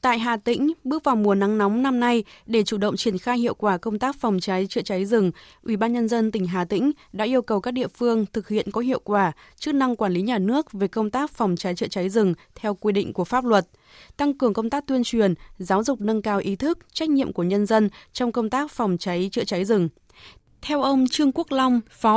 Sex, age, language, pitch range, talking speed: female, 20-39, Vietnamese, 195-250 Hz, 250 wpm